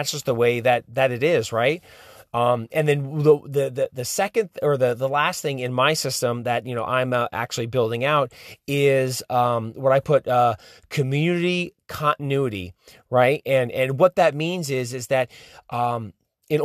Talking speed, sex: 185 wpm, male